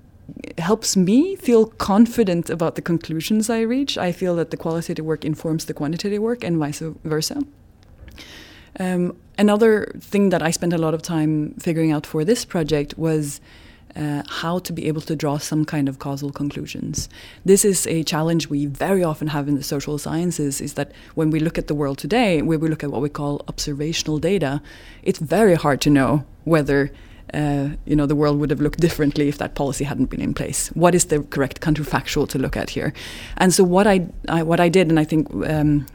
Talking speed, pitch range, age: 205 wpm, 145-180 Hz, 20-39